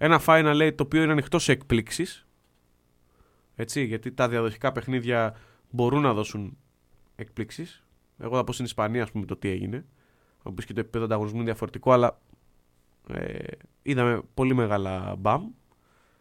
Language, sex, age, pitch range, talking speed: Greek, male, 20-39, 105-140 Hz, 150 wpm